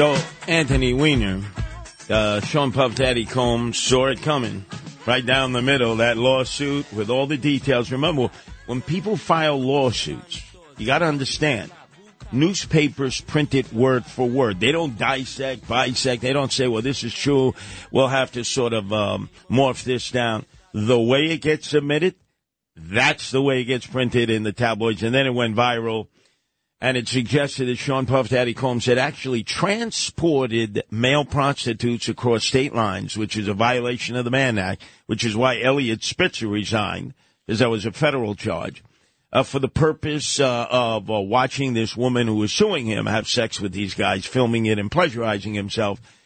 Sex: male